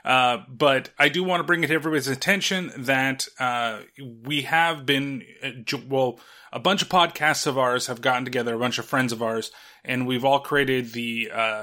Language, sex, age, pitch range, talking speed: English, male, 30-49, 130-165 Hz, 205 wpm